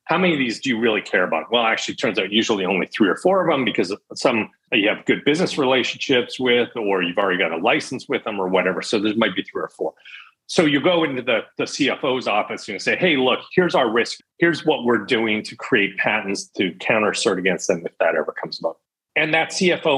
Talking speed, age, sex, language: 245 wpm, 40-59, male, English